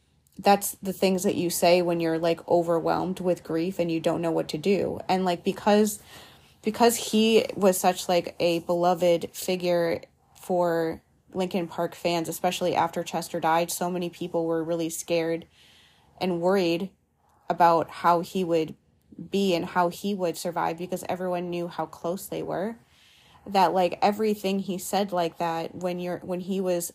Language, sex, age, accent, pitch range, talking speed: English, female, 20-39, American, 170-190 Hz, 165 wpm